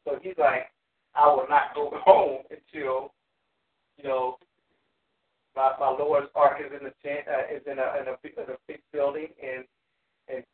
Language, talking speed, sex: English, 195 wpm, male